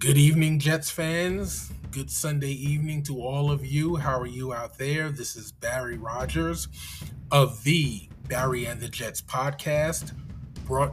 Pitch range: 115-145 Hz